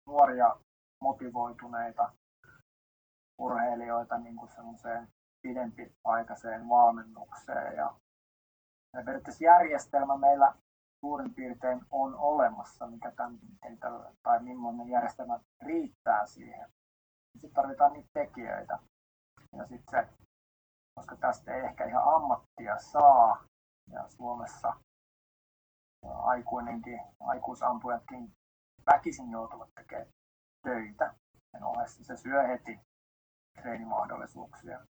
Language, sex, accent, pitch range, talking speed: Finnish, male, native, 115-125 Hz, 85 wpm